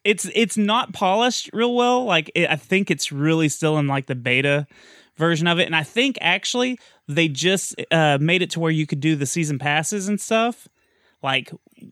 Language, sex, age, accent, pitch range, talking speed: English, male, 20-39, American, 140-190 Hz, 200 wpm